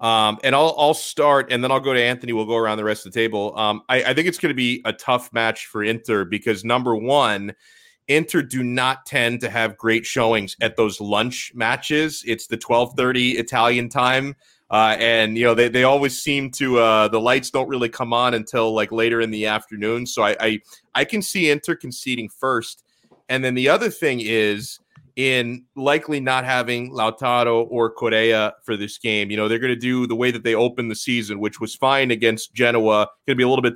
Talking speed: 215 wpm